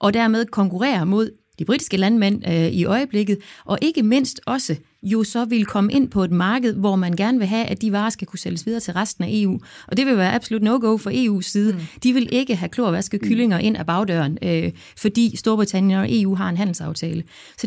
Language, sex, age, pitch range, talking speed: Danish, female, 30-49, 185-230 Hz, 220 wpm